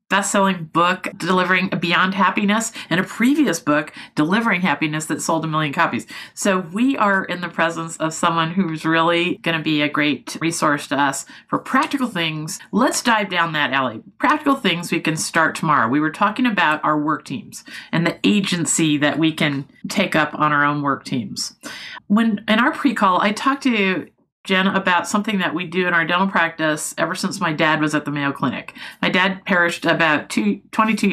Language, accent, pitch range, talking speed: English, American, 155-205 Hz, 195 wpm